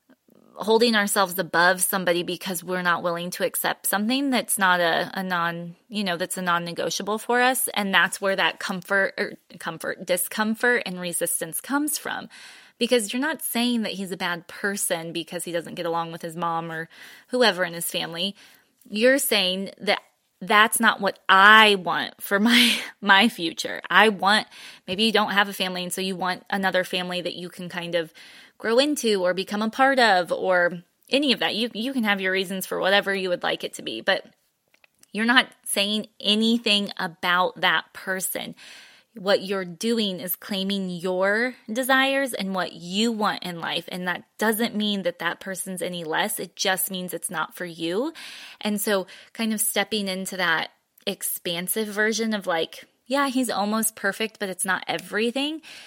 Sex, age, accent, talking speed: female, 20-39, American, 180 wpm